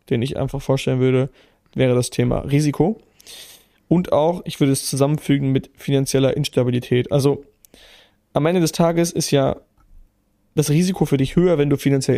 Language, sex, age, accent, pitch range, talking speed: German, male, 20-39, German, 125-150 Hz, 165 wpm